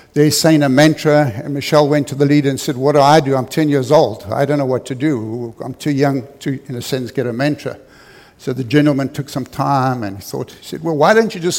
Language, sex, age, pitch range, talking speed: English, male, 60-79, 130-155 Hz, 265 wpm